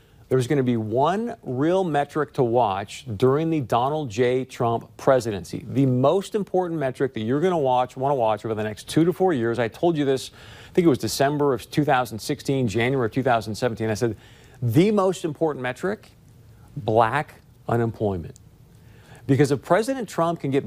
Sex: male